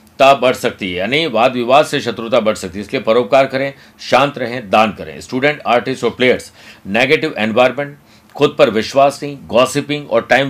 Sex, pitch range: male, 110-140 Hz